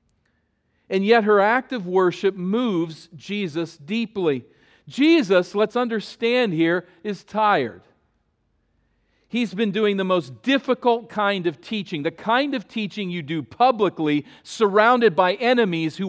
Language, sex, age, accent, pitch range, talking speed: English, male, 40-59, American, 150-215 Hz, 130 wpm